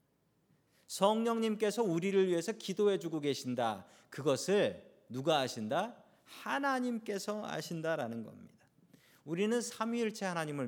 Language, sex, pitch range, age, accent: Korean, male, 160-220 Hz, 40-59, native